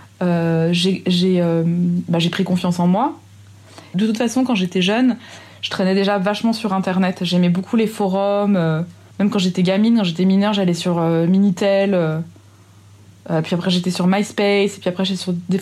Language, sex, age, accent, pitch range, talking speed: French, female, 20-39, French, 170-205 Hz, 190 wpm